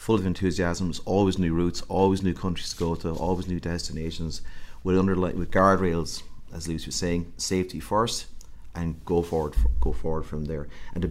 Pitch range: 80-90 Hz